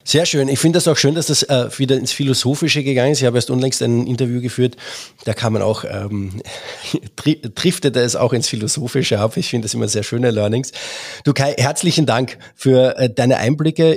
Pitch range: 110-135 Hz